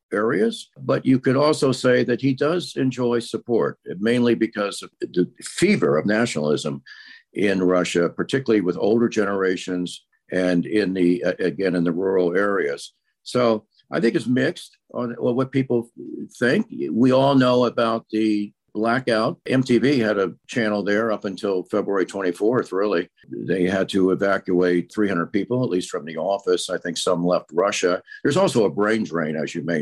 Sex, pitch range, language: male, 90-115 Hz, English